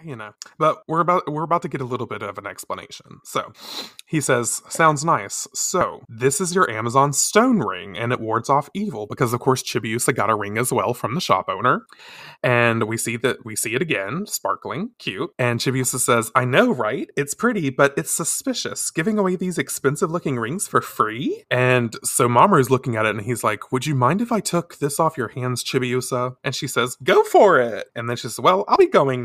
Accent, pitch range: American, 125-190 Hz